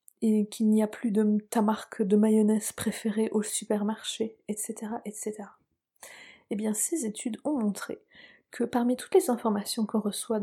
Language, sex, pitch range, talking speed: French, female, 205-235 Hz, 160 wpm